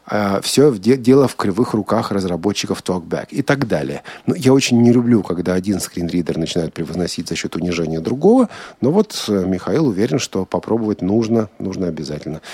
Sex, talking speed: male, 165 wpm